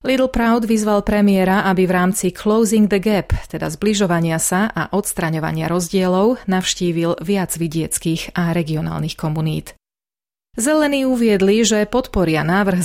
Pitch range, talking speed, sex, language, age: 170-205 Hz, 125 wpm, female, Slovak, 30-49